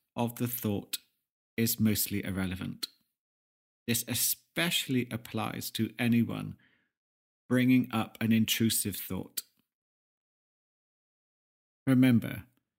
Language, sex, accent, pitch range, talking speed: English, male, British, 105-130 Hz, 80 wpm